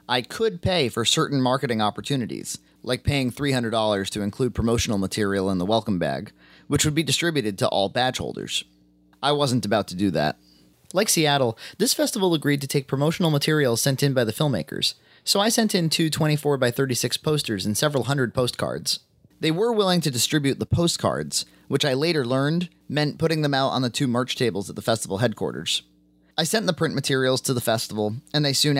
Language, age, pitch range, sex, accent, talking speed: English, 30-49, 105-150 Hz, male, American, 195 wpm